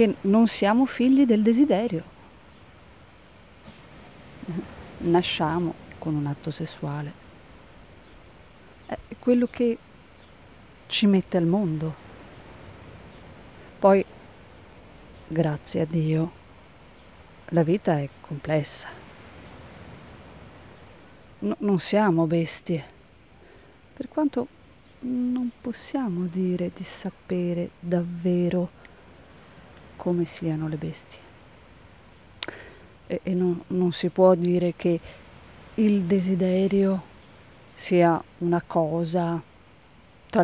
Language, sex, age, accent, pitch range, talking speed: Italian, female, 30-49, native, 160-200 Hz, 80 wpm